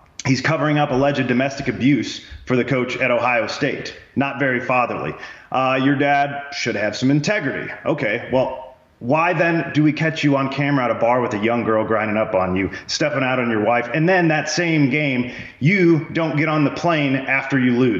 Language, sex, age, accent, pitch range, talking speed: English, male, 30-49, American, 125-160 Hz, 205 wpm